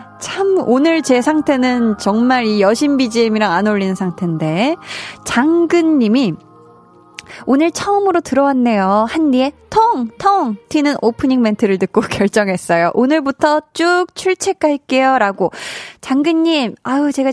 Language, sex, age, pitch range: Korean, female, 20-39, 210-305 Hz